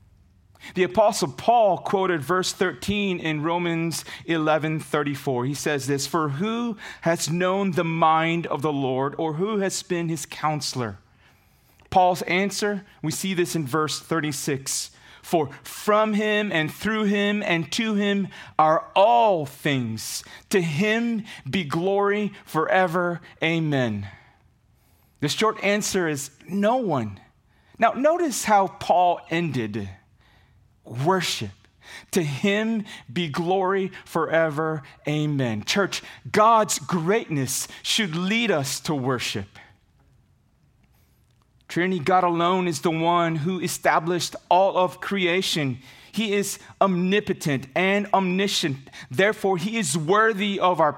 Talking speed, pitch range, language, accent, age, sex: 120 wpm, 140-195 Hz, English, American, 30-49, male